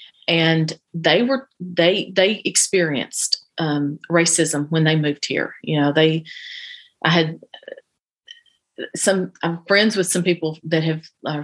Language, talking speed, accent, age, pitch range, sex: English, 135 wpm, American, 40-59, 150-175 Hz, female